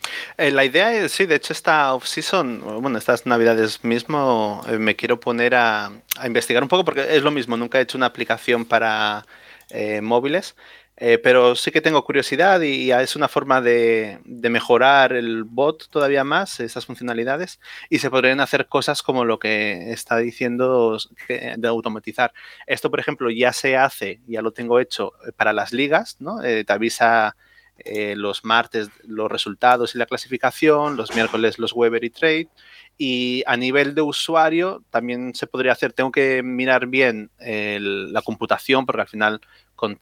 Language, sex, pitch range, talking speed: Spanish, male, 110-135 Hz, 175 wpm